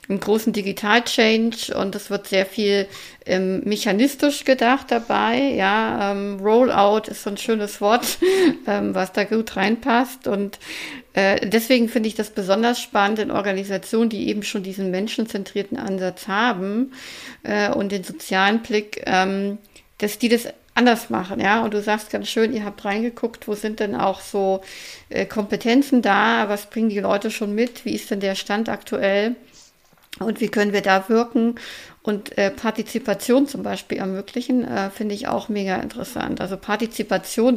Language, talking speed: German, 160 wpm